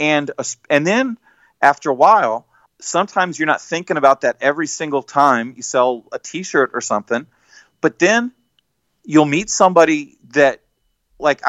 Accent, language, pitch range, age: American, English, 130-165 Hz, 40-59